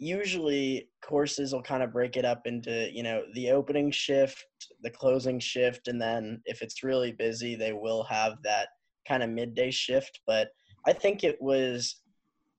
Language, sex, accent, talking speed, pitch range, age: English, male, American, 170 wpm, 115-140 Hz, 10-29